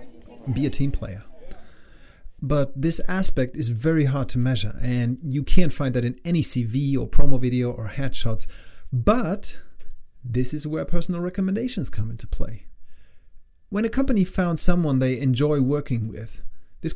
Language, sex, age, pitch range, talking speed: English, male, 30-49, 115-165 Hz, 155 wpm